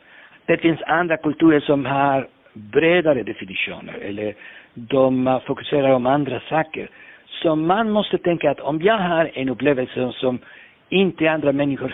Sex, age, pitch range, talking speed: male, 60-79, 130-175 Hz, 140 wpm